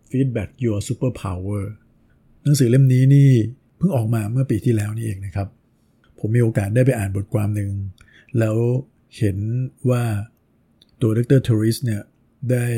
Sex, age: male, 60-79